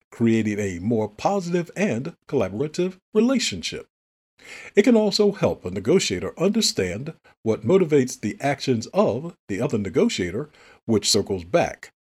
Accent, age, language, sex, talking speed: American, 50-69, English, male, 125 wpm